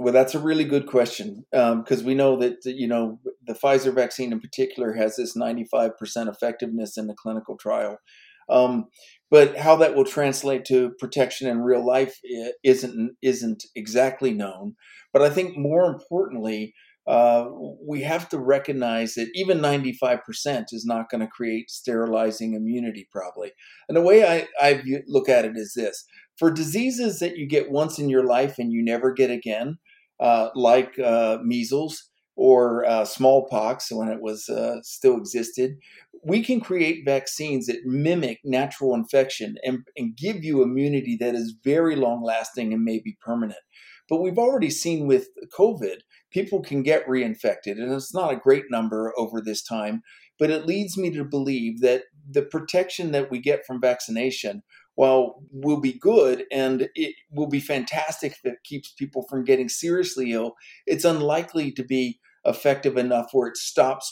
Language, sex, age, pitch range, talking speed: English, male, 50-69, 120-160 Hz, 170 wpm